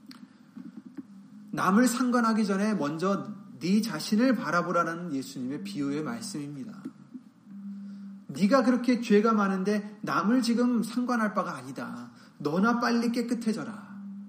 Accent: native